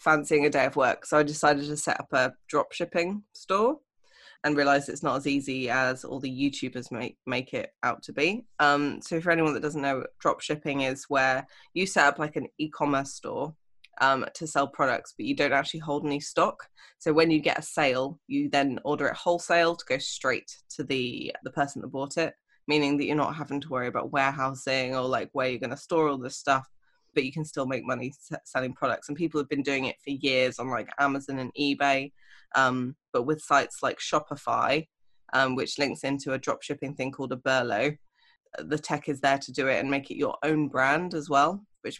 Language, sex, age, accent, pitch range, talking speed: English, female, 20-39, British, 135-150 Hz, 220 wpm